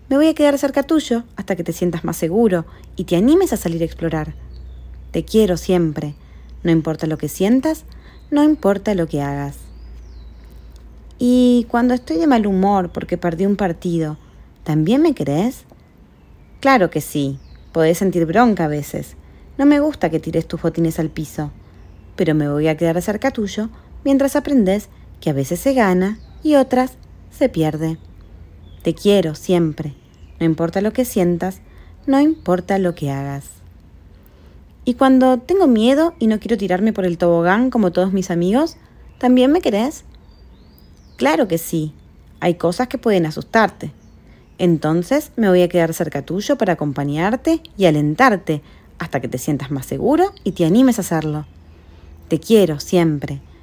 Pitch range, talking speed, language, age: 150-230 Hz, 160 wpm, Spanish, 30-49